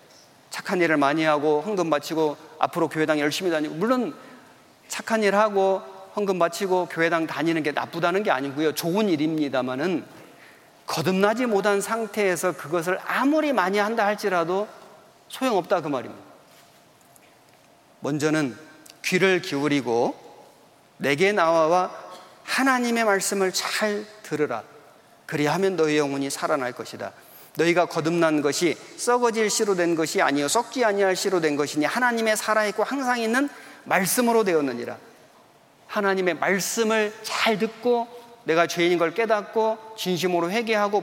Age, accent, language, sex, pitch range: 40-59, native, Korean, male, 155-215 Hz